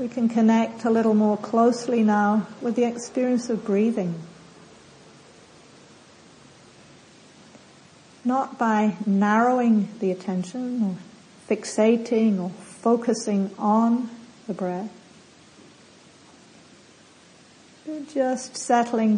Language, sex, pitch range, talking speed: English, female, 200-235 Hz, 90 wpm